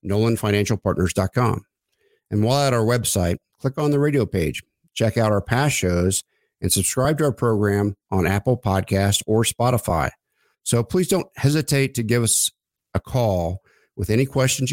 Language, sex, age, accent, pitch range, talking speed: English, male, 50-69, American, 100-125 Hz, 155 wpm